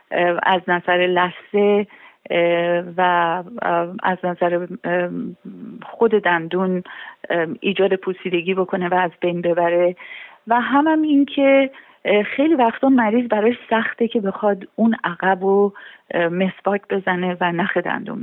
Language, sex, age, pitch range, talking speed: Persian, female, 40-59, 185-255 Hz, 110 wpm